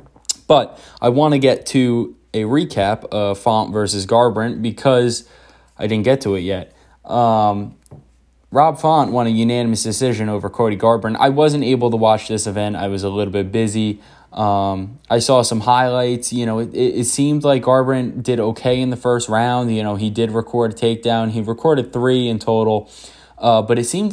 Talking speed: 190 wpm